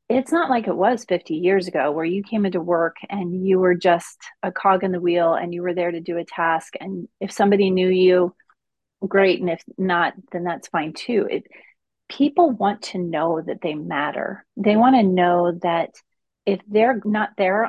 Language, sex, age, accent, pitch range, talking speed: English, female, 30-49, American, 180-220 Hz, 200 wpm